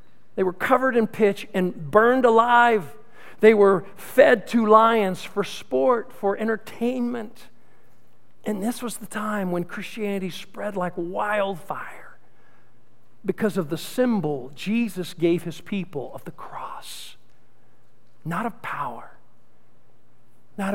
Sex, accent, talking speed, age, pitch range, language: male, American, 120 wpm, 50-69, 180-240 Hz, English